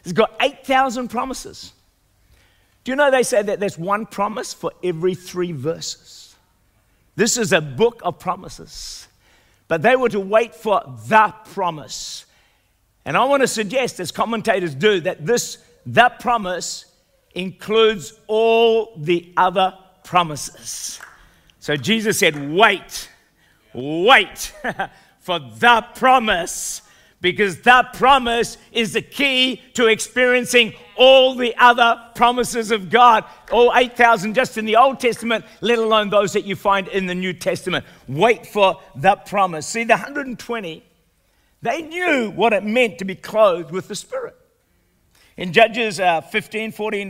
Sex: male